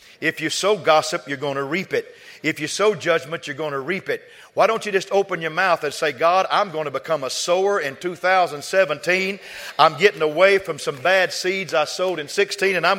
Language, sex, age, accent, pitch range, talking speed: English, male, 50-69, American, 150-200 Hz, 225 wpm